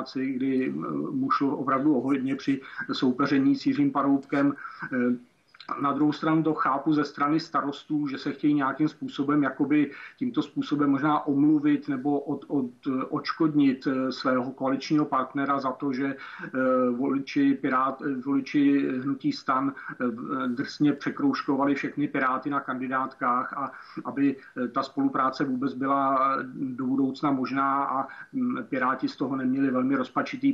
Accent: native